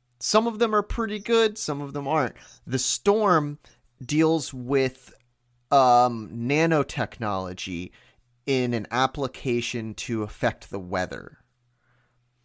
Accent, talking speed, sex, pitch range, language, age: American, 110 wpm, male, 105-125 Hz, English, 30-49